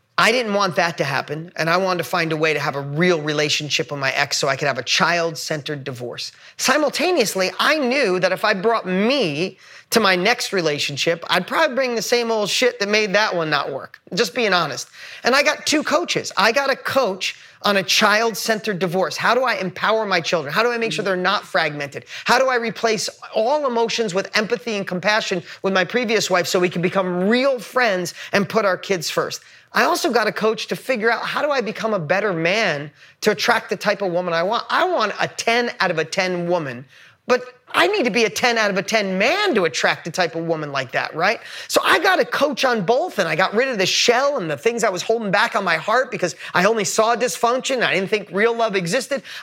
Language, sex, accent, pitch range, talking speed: English, male, American, 180-235 Hz, 240 wpm